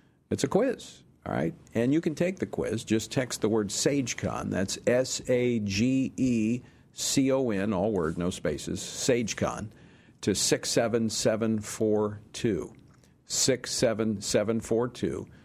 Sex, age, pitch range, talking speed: male, 50-69, 105-125 Hz, 100 wpm